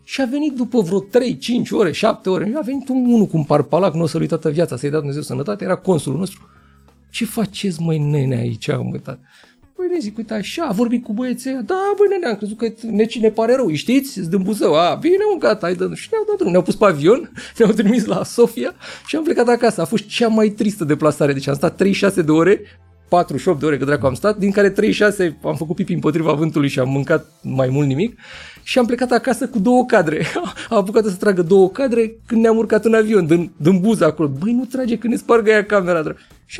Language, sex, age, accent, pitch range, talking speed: Romanian, male, 40-59, native, 140-230 Hz, 235 wpm